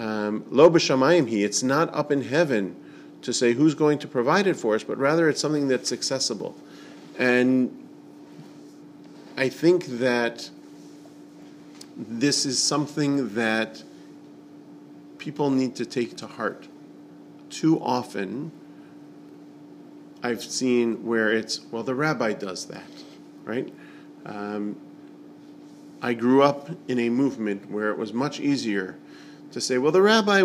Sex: male